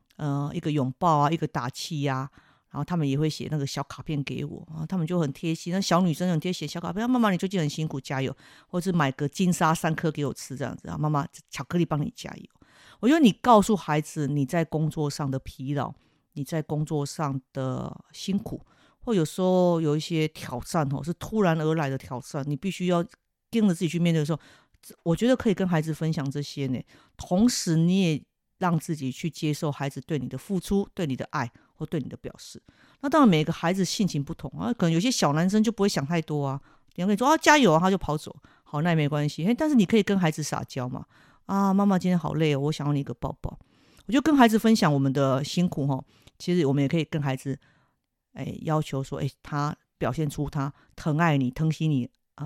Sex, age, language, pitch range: female, 50-69, Chinese, 140-180 Hz